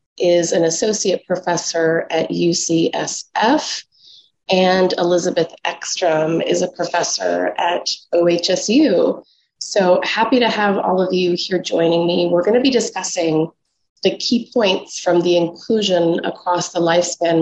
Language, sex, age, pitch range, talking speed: English, female, 30-49, 170-210 Hz, 130 wpm